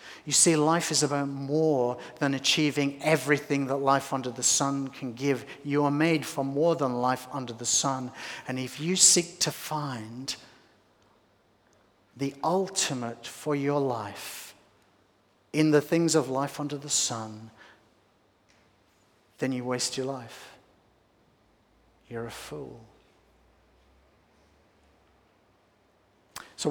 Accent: British